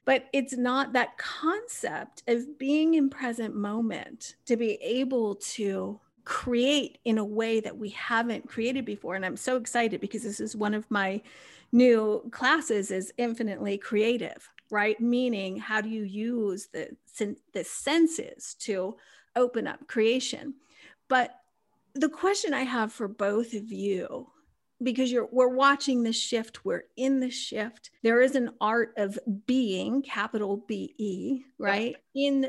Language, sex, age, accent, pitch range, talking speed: English, female, 40-59, American, 210-265 Hz, 150 wpm